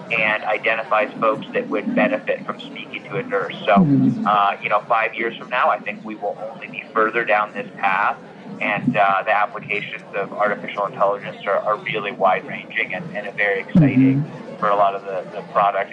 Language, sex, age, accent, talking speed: English, male, 30-49, American, 195 wpm